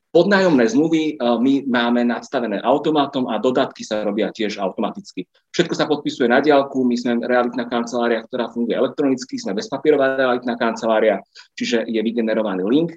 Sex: male